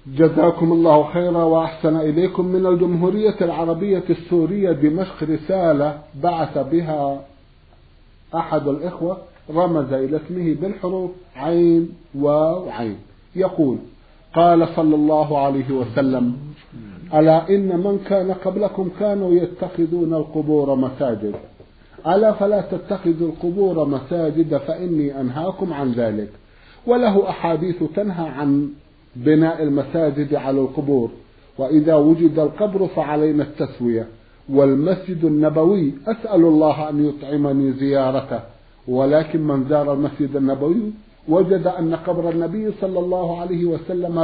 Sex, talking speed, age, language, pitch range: male, 105 wpm, 50-69, Arabic, 140-180 Hz